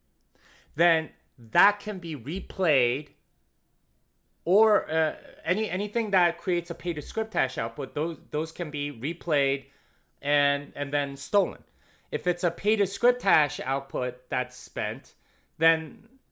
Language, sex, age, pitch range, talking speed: English, male, 30-49, 135-180 Hz, 115 wpm